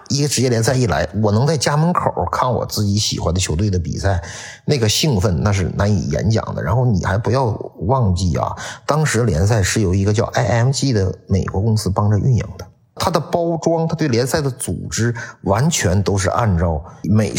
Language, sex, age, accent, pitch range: Chinese, male, 50-69, native, 85-115 Hz